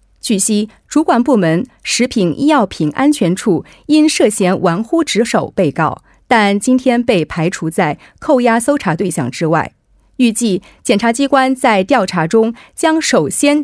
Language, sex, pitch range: Korean, female, 175-265 Hz